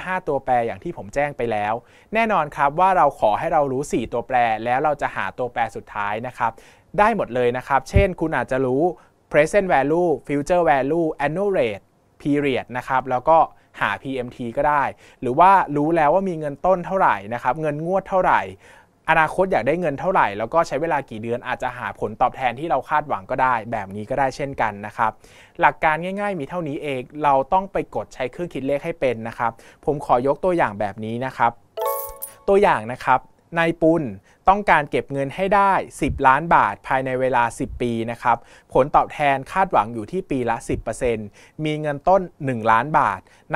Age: 20-39